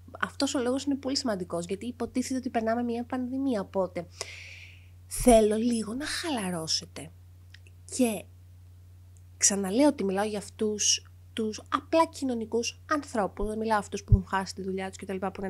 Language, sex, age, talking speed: Greek, female, 20-39, 165 wpm